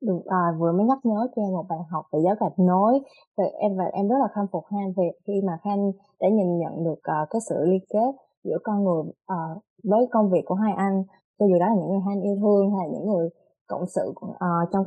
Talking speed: 260 wpm